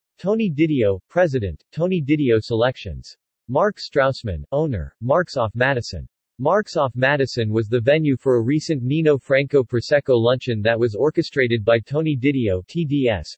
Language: English